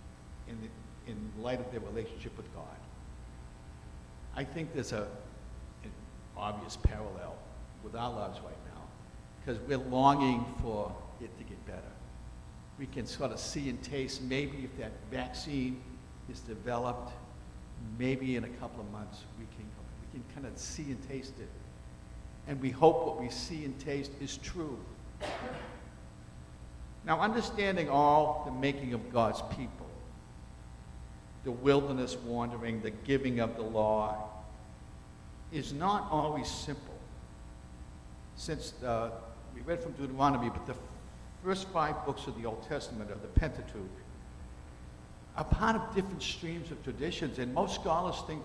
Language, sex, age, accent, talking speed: English, male, 60-79, American, 140 wpm